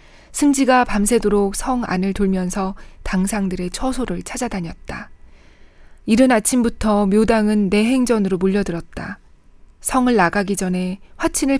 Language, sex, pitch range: Korean, female, 165-215 Hz